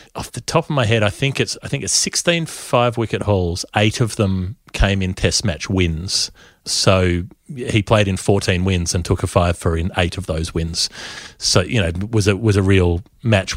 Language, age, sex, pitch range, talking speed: English, 30-49, male, 90-110 Hz, 215 wpm